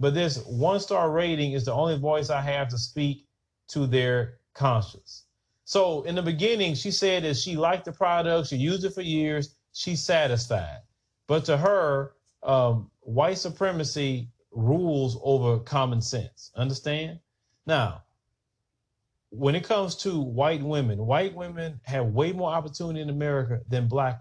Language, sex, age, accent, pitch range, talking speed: English, male, 30-49, American, 120-165 Hz, 150 wpm